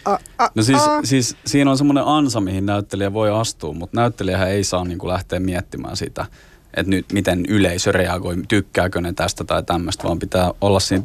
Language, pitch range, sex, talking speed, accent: Finnish, 90-110 Hz, male, 175 wpm, native